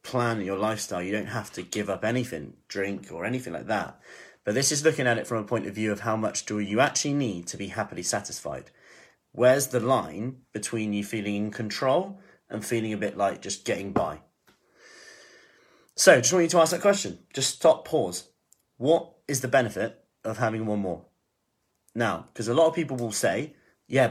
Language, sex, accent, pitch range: English, male, British, 105-130 Hz